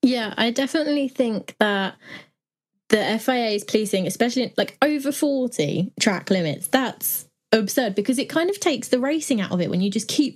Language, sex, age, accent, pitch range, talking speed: English, female, 20-39, British, 185-245 Hz, 180 wpm